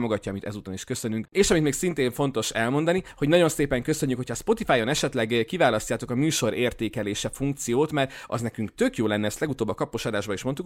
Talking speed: 195 wpm